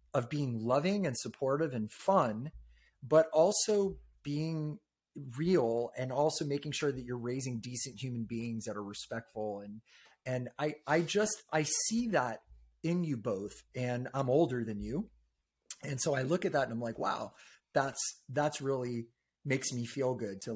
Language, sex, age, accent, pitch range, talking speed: English, male, 30-49, American, 115-140 Hz, 170 wpm